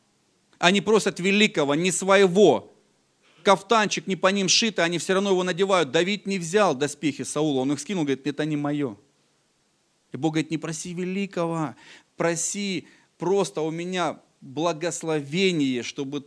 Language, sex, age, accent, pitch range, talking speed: Russian, male, 40-59, native, 145-195 Hz, 145 wpm